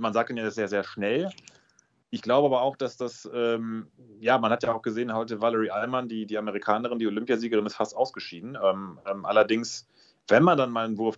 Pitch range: 100-115 Hz